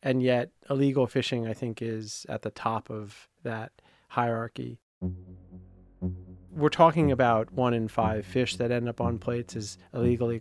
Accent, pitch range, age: American, 100-120 Hz, 30-49